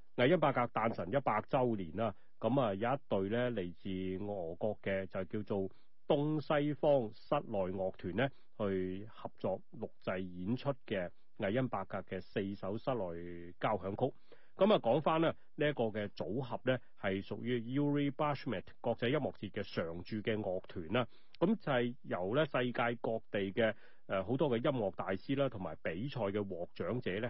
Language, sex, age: Chinese, male, 30-49